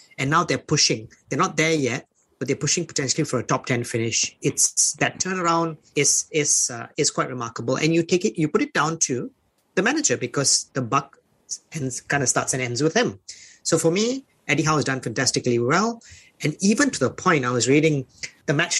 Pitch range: 125-160 Hz